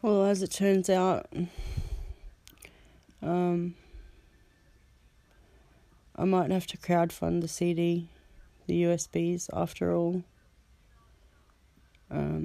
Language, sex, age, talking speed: English, female, 30-49, 85 wpm